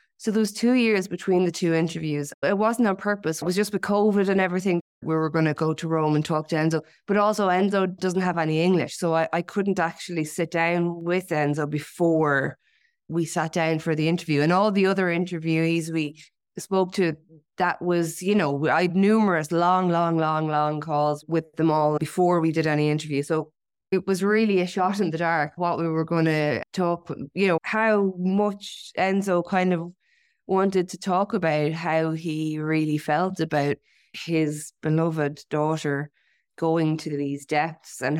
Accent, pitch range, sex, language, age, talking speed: Irish, 155-185 Hz, female, English, 20-39, 190 wpm